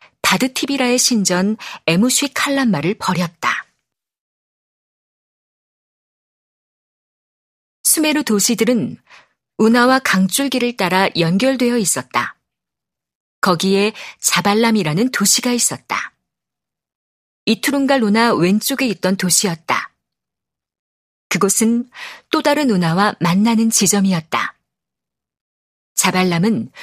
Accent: native